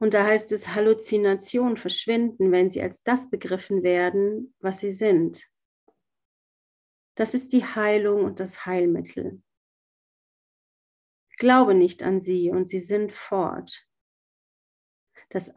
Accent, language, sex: German, German, female